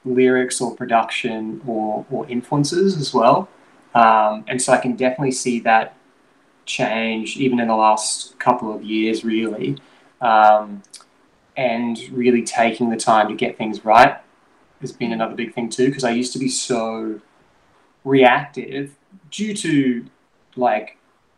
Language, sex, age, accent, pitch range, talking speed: English, male, 20-39, Australian, 110-135 Hz, 145 wpm